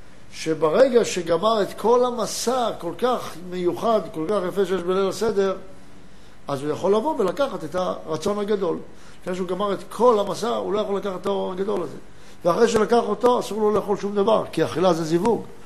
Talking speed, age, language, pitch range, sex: 185 wpm, 60-79, Hebrew, 180-220 Hz, male